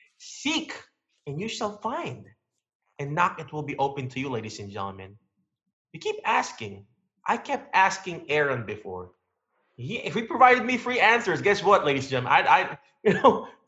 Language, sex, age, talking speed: English, male, 20-39, 175 wpm